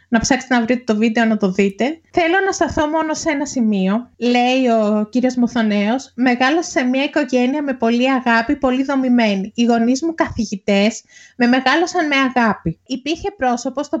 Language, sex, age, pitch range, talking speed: Greek, female, 20-39, 230-310 Hz, 170 wpm